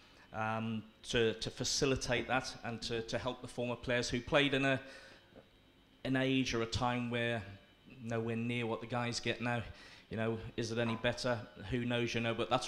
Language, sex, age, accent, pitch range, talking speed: English, male, 30-49, British, 120-135 Hz, 195 wpm